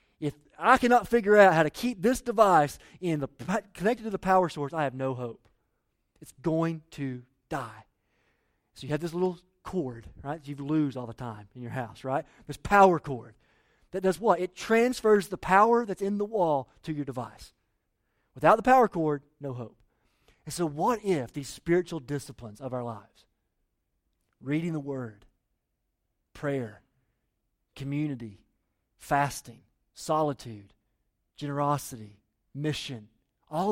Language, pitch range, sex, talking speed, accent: English, 130-195 Hz, male, 150 wpm, American